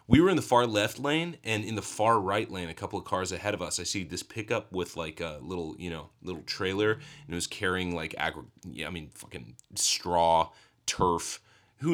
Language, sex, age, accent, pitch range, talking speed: English, male, 30-49, American, 95-120 Hz, 225 wpm